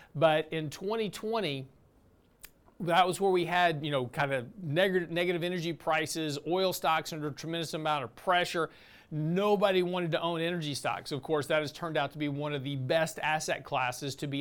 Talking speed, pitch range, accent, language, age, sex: 190 wpm, 145-175 Hz, American, English, 40-59, male